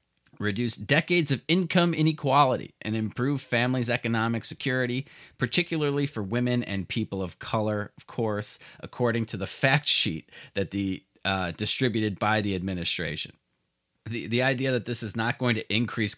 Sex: male